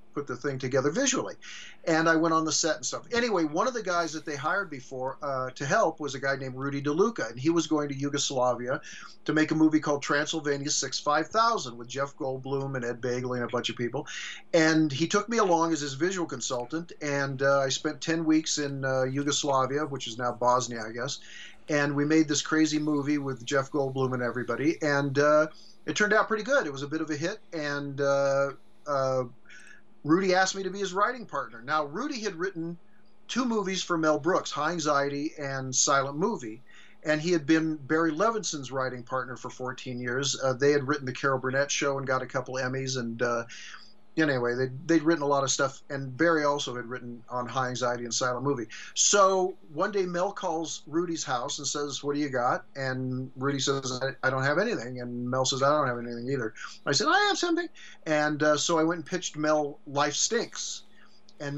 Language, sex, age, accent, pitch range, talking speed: English, male, 50-69, American, 130-165 Hz, 210 wpm